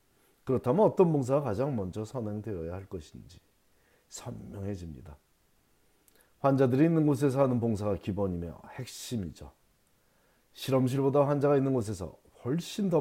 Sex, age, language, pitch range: male, 30-49, Korean, 95-140 Hz